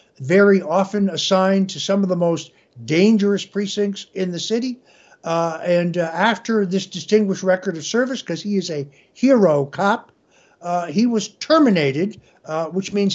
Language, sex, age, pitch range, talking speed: English, male, 60-79, 170-220 Hz, 160 wpm